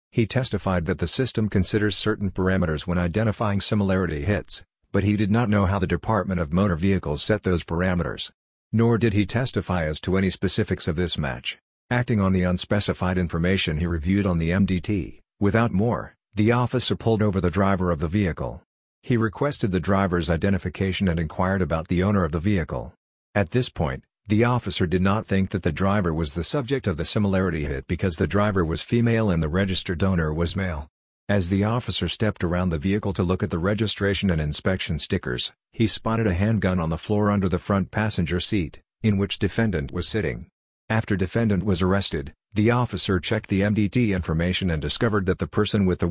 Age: 50-69